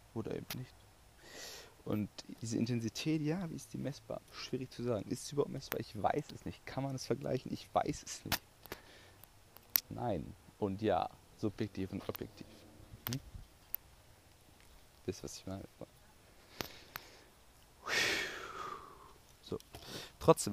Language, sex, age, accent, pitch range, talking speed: Dutch, male, 40-59, German, 95-120 Hz, 120 wpm